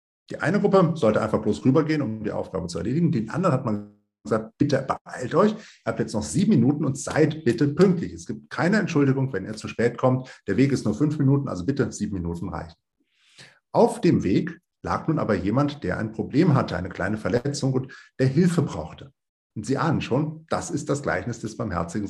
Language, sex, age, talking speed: German, male, 50-69, 210 wpm